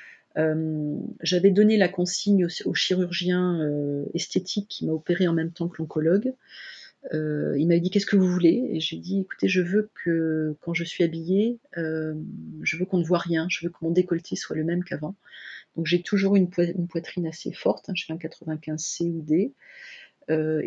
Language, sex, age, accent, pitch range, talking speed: French, female, 40-59, French, 160-195 Hz, 210 wpm